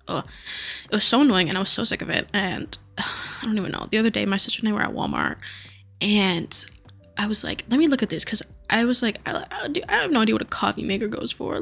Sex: female